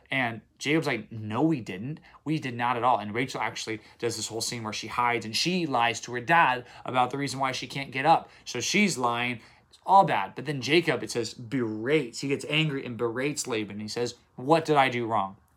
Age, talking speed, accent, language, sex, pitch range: 20-39, 235 wpm, American, English, male, 120-160 Hz